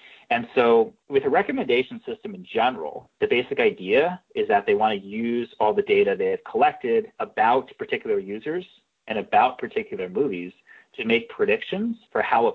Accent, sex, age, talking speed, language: American, male, 30-49, 170 wpm, English